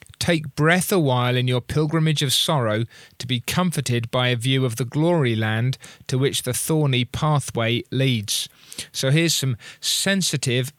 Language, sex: English, male